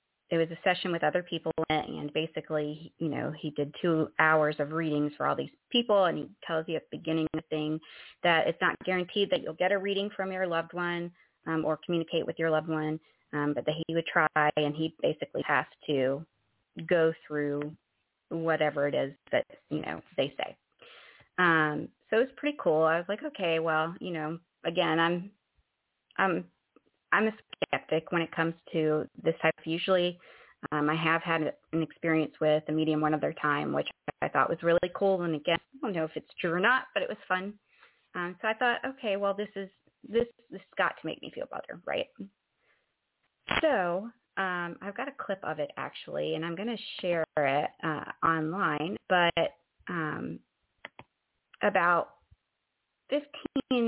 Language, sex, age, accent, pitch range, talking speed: English, female, 30-49, American, 155-190 Hz, 185 wpm